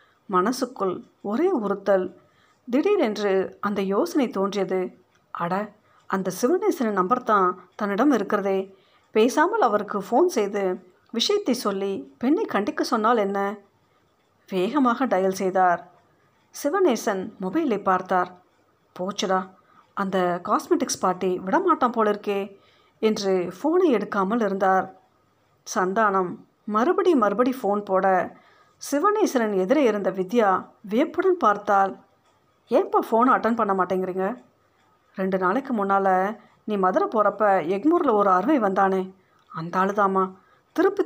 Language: Tamil